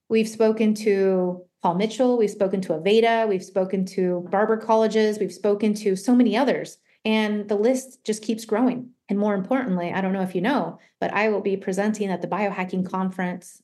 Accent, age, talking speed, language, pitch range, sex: American, 30-49, 195 wpm, English, 190-220 Hz, female